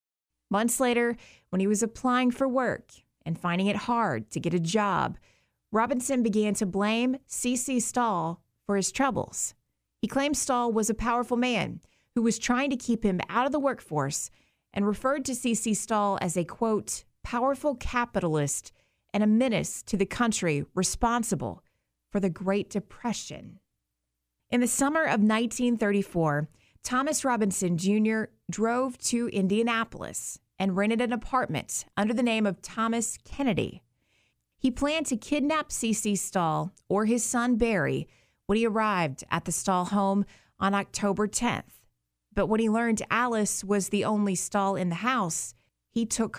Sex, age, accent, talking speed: female, 30-49, American, 155 wpm